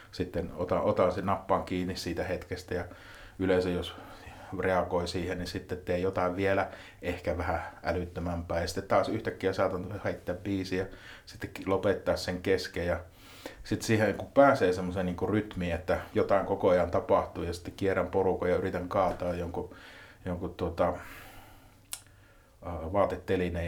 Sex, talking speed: male, 140 wpm